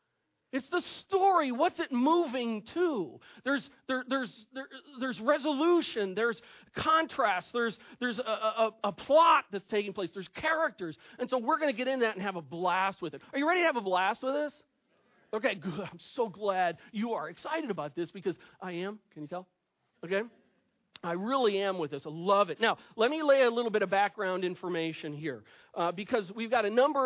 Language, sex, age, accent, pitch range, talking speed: English, male, 40-59, American, 190-260 Hz, 205 wpm